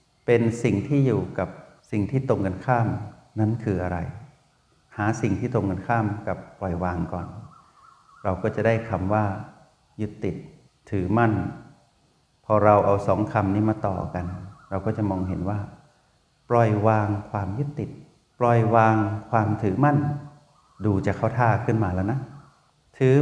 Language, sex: Thai, male